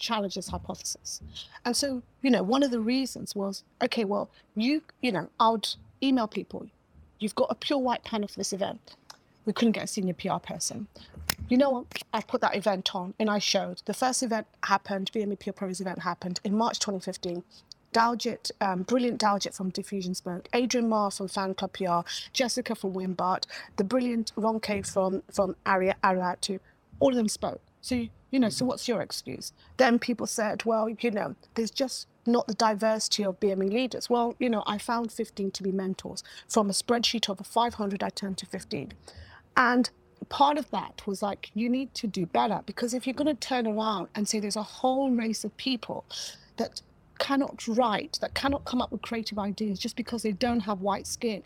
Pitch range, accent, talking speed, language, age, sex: 195-240 Hz, British, 195 wpm, English, 40-59, female